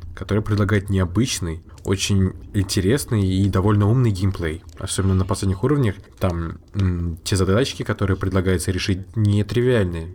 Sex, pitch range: male, 95-105 Hz